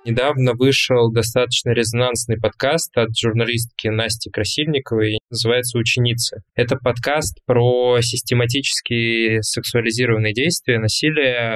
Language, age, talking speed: Russian, 20-39, 95 wpm